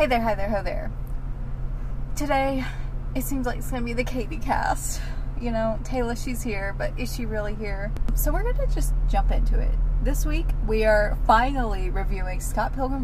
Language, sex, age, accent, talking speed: English, female, 20-39, American, 190 wpm